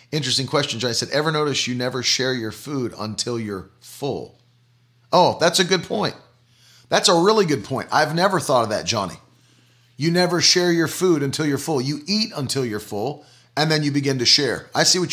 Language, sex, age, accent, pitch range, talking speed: English, male, 40-59, American, 130-170 Hz, 205 wpm